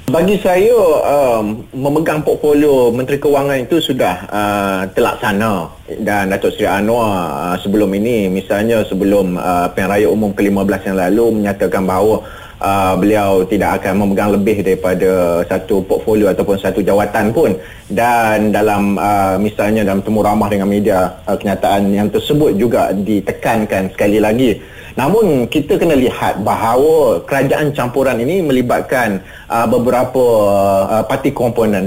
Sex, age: male, 30-49